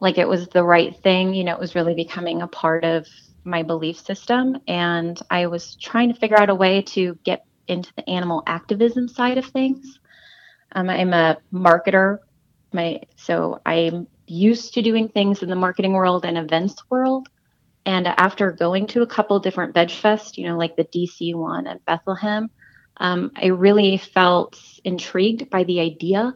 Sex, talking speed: female, 180 wpm